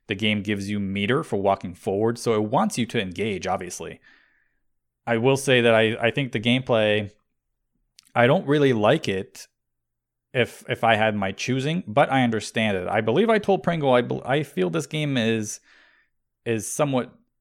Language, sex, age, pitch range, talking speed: English, male, 30-49, 105-130 Hz, 185 wpm